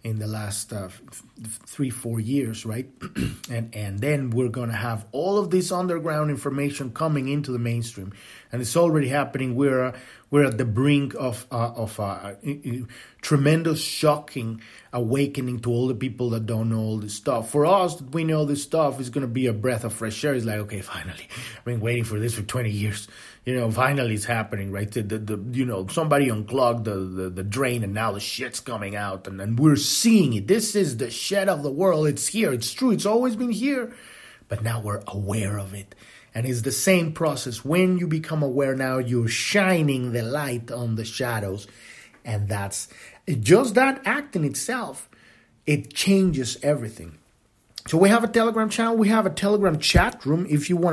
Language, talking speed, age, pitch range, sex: English, 200 wpm, 30-49, 115-160 Hz, male